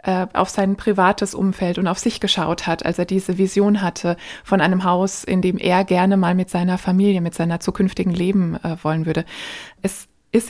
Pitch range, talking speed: 185-215 Hz, 195 wpm